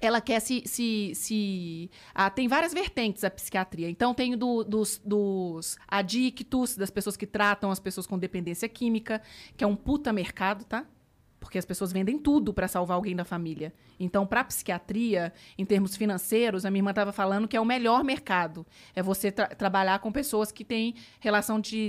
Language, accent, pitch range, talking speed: Portuguese, Brazilian, 195-245 Hz, 185 wpm